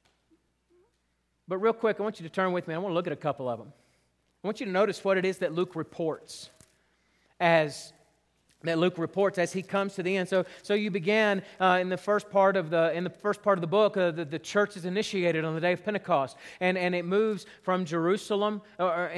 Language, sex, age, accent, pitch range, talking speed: English, male, 40-59, American, 185-230 Hz, 240 wpm